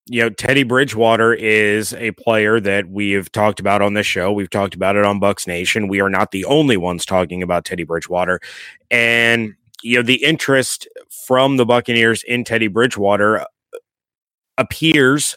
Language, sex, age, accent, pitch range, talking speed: English, male, 30-49, American, 100-125 Hz, 170 wpm